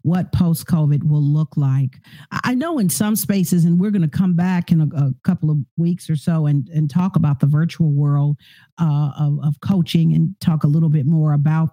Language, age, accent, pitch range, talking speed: English, 50-69, American, 155-200 Hz, 215 wpm